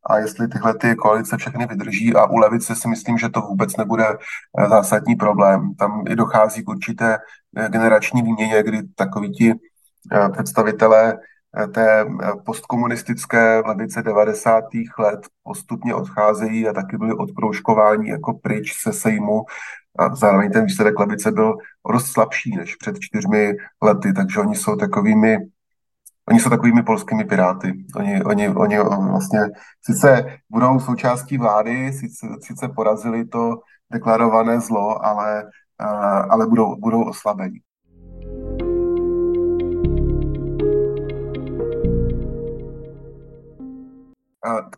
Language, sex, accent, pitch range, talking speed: Czech, male, native, 110-165 Hz, 115 wpm